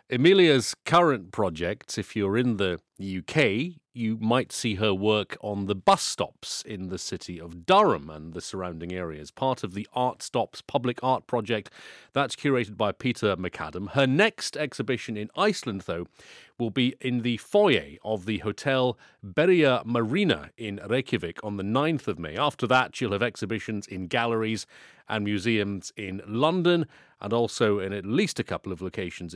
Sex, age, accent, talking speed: male, 30-49, British, 170 wpm